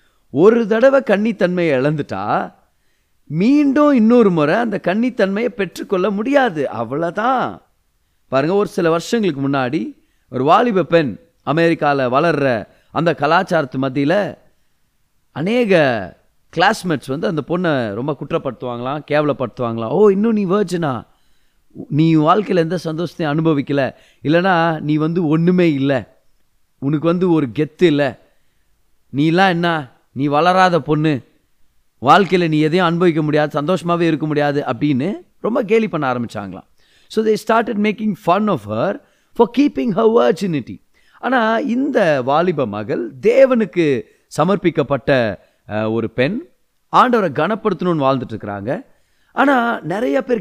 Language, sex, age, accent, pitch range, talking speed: Tamil, male, 30-49, native, 140-210 Hz, 115 wpm